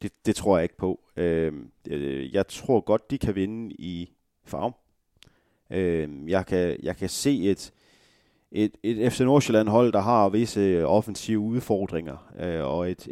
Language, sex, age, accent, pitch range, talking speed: Danish, male, 30-49, native, 90-110 Hz, 140 wpm